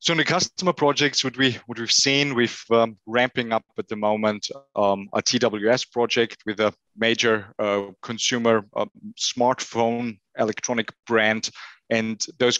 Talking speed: 150 wpm